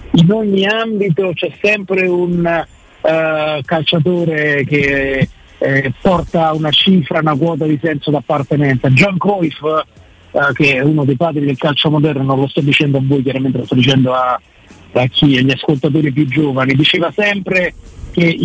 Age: 50-69